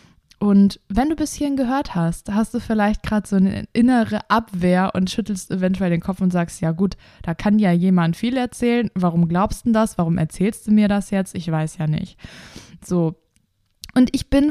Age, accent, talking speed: 20-39, German, 200 wpm